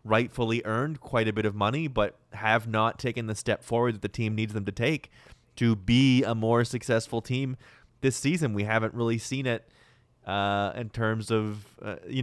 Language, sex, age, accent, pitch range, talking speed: English, male, 20-39, American, 105-120 Hz, 195 wpm